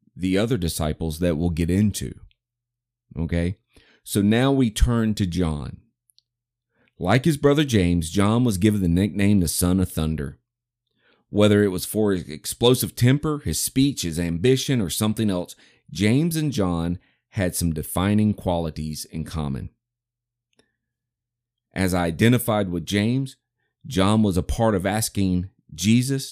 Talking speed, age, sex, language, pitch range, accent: 140 wpm, 30-49, male, English, 90-120 Hz, American